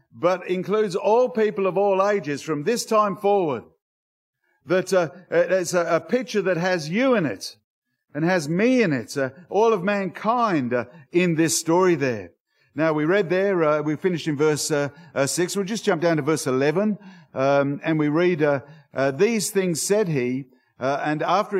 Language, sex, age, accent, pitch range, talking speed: English, male, 50-69, Australian, 145-195 Hz, 190 wpm